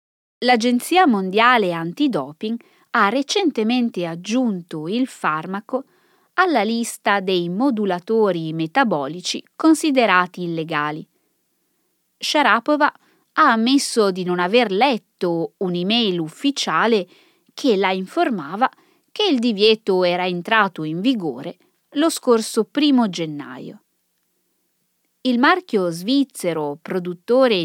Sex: female